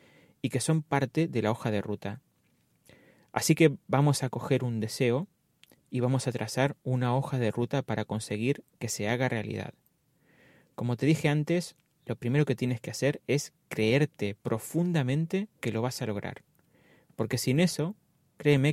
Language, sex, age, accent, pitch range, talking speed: Spanish, male, 30-49, Argentinian, 120-155 Hz, 165 wpm